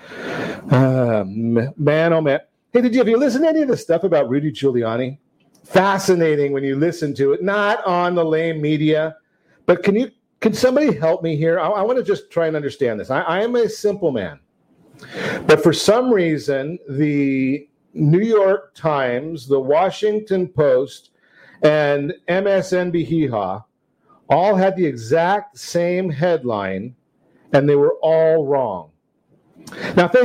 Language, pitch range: English, 150-205 Hz